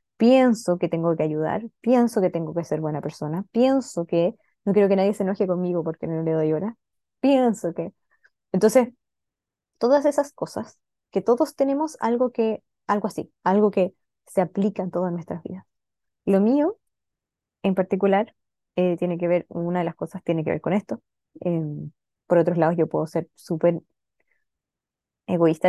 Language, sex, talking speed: Spanish, female, 170 wpm